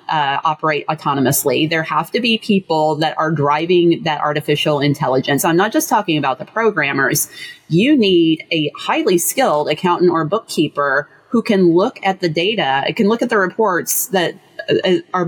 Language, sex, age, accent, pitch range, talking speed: English, female, 30-49, American, 150-195 Hz, 170 wpm